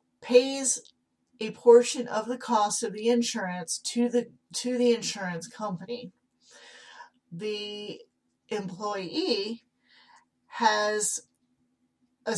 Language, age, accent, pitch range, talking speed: English, 40-59, American, 190-240 Hz, 90 wpm